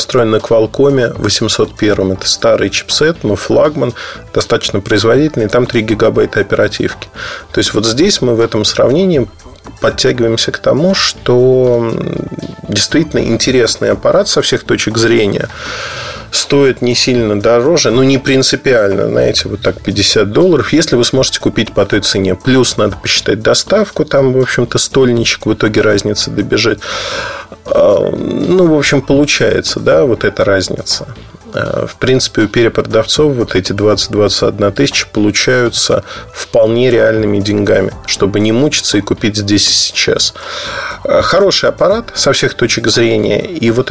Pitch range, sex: 105-130 Hz, male